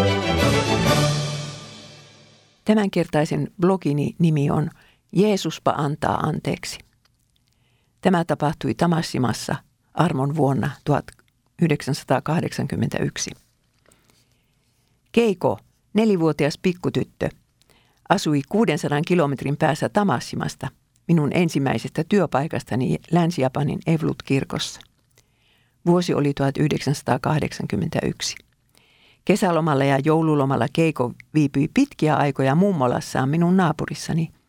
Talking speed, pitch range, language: 70 wpm, 135-175 Hz, Finnish